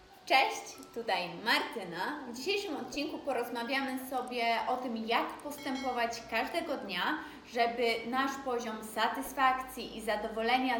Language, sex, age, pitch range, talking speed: Polish, female, 20-39, 230-275 Hz, 110 wpm